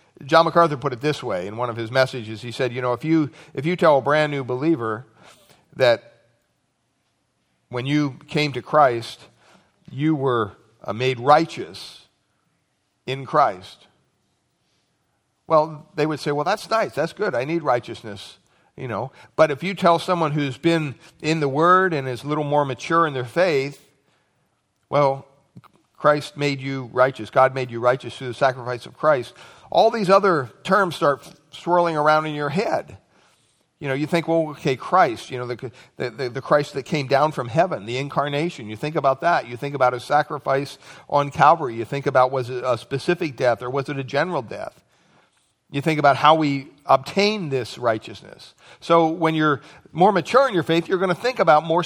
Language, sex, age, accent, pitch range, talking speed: English, male, 50-69, American, 130-165 Hz, 185 wpm